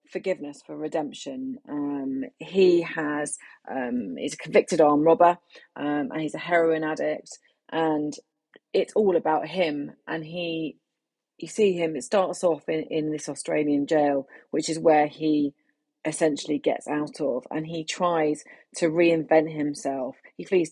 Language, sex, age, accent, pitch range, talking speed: English, female, 30-49, British, 155-185 Hz, 150 wpm